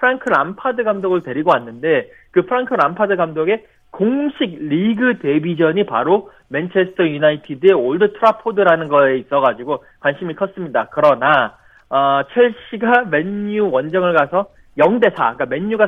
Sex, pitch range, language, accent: male, 160-230 Hz, Korean, native